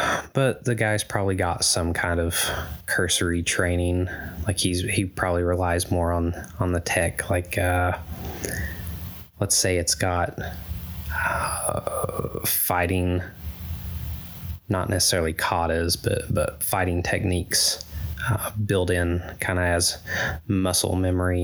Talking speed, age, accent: 120 wpm, 20-39, American